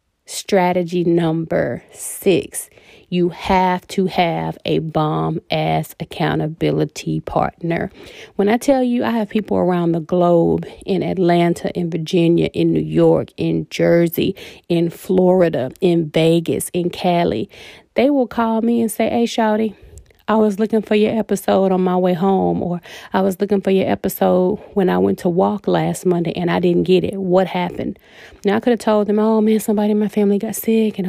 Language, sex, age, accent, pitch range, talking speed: English, female, 30-49, American, 175-220 Hz, 175 wpm